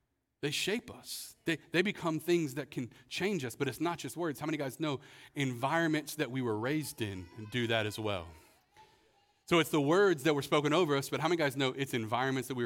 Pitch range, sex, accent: 150-190 Hz, male, American